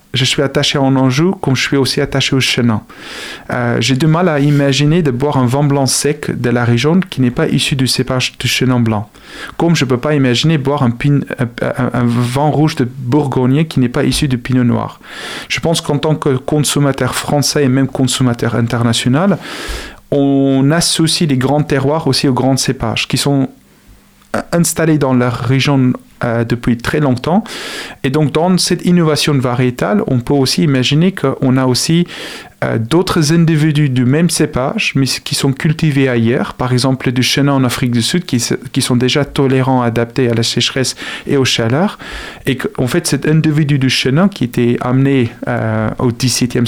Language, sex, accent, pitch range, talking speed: French, male, French, 125-150 Hz, 190 wpm